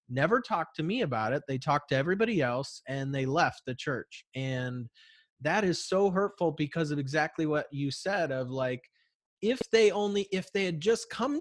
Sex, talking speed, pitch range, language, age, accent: male, 195 wpm, 130-170 Hz, English, 30-49, American